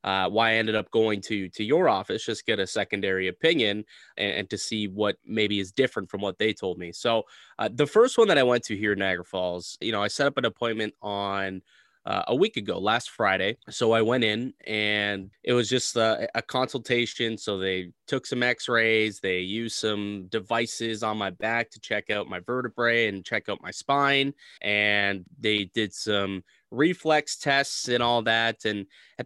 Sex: male